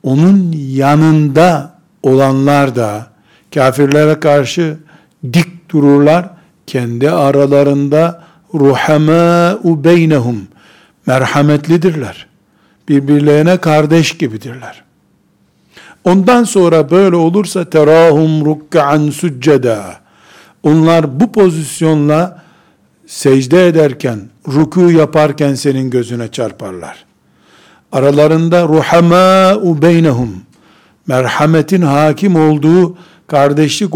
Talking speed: 65 wpm